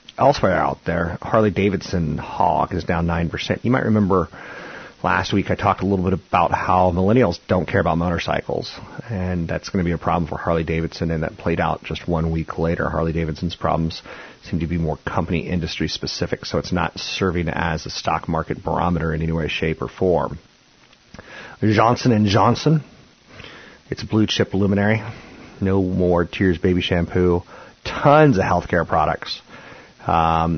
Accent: American